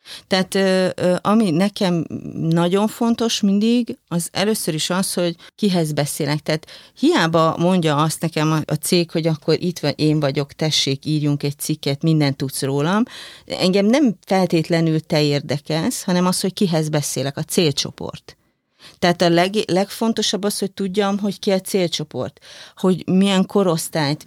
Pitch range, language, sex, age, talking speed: 155-195 Hz, Hungarian, female, 40-59, 140 wpm